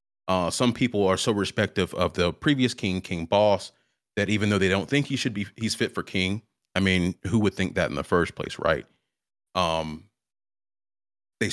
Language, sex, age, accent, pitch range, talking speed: English, male, 30-49, American, 95-115 Hz, 200 wpm